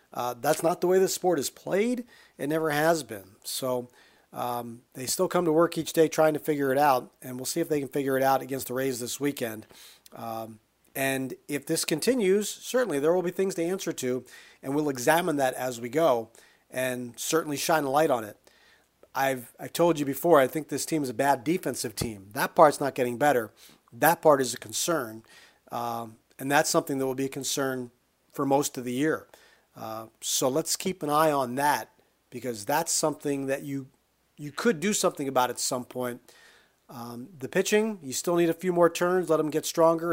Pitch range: 130-165 Hz